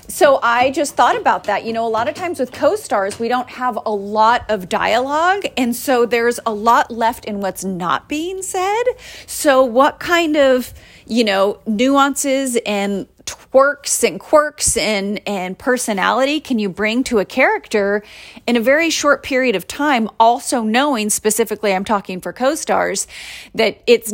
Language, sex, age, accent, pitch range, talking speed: English, female, 30-49, American, 200-265 Hz, 170 wpm